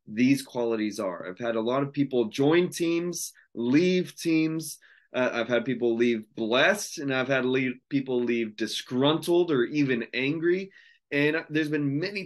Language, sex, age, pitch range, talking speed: English, male, 20-39, 125-160 Hz, 155 wpm